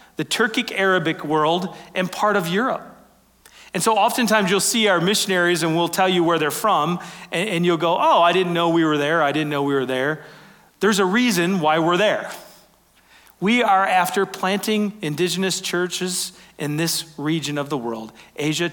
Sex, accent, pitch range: male, American, 135-175 Hz